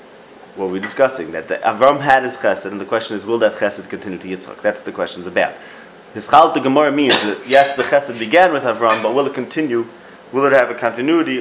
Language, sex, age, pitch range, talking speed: English, male, 30-49, 115-145 Hz, 235 wpm